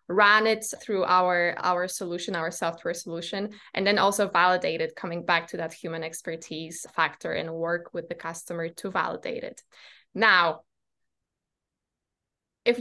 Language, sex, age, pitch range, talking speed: English, female, 20-39, 175-220 Hz, 140 wpm